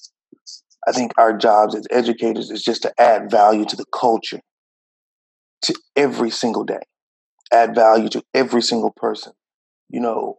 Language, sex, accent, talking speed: English, male, American, 150 wpm